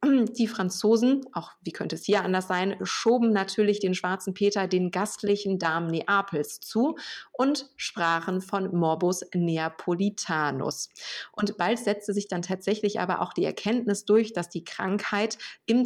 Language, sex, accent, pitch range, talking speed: German, female, German, 175-220 Hz, 150 wpm